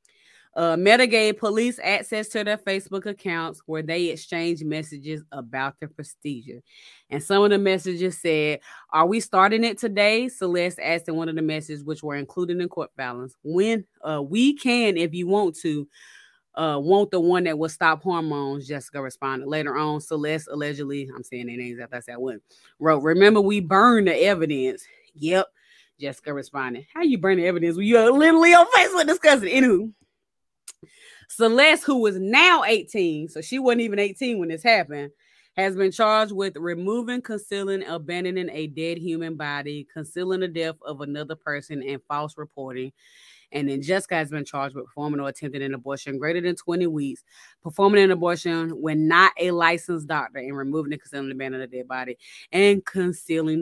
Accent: American